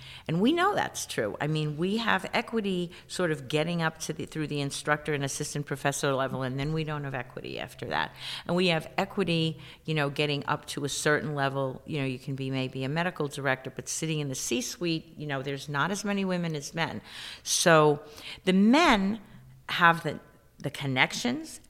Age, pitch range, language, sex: 50-69, 140-175 Hz, English, female